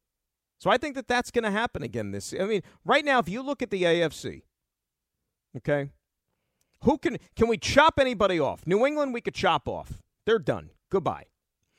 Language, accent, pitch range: English, American, 140-195 Hz